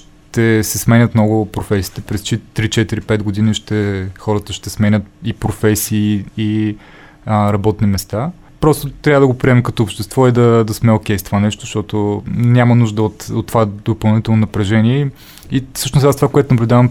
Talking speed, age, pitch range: 170 wpm, 20-39, 105-125 Hz